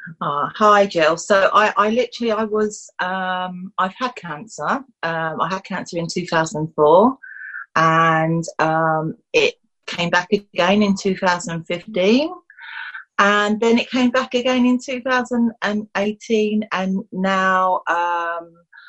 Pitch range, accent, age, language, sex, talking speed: 165-220 Hz, British, 40-59, English, female, 120 wpm